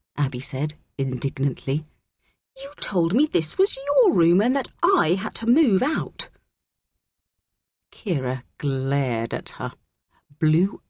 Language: English